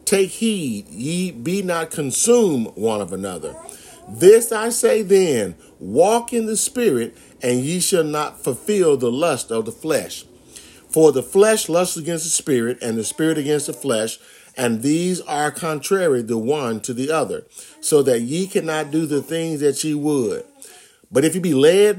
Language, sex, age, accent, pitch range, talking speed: English, male, 50-69, American, 140-205 Hz, 175 wpm